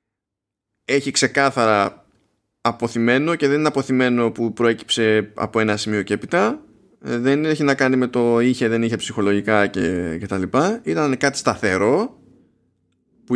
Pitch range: 110-150 Hz